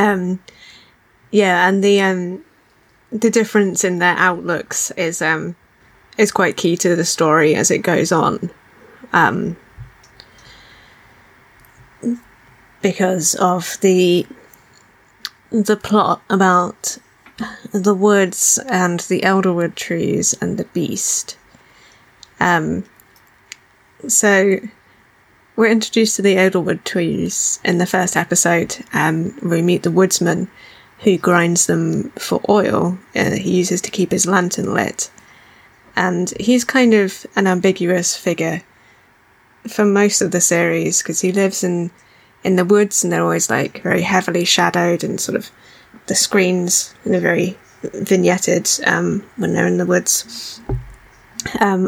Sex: female